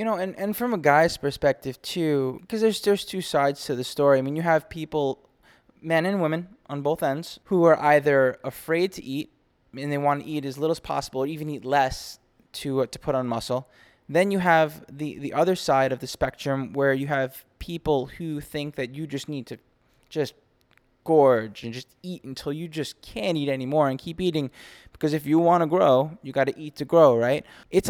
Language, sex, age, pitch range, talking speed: English, male, 20-39, 125-160 Hz, 220 wpm